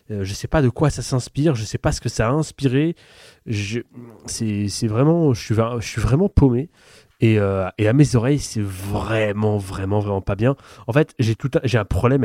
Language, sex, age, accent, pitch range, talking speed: French, male, 20-39, French, 105-130 Hz, 220 wpm